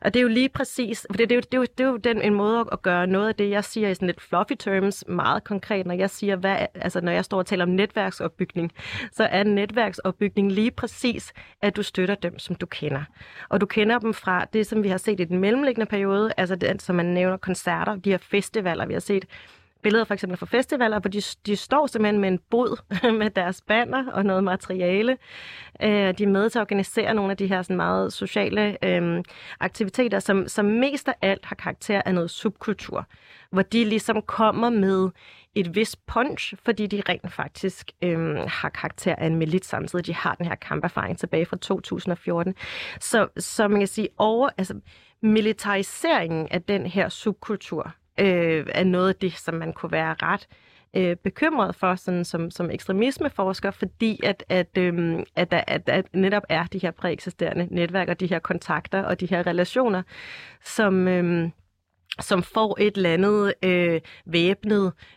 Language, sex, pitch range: Danish, female, 180-215 Hz